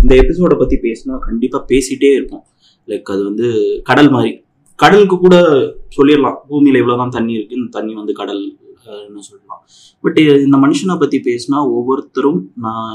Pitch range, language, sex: 105-145 Hz, Tamil, male